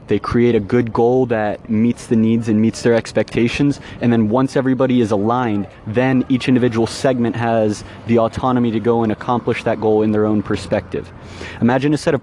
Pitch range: 110-125 Hz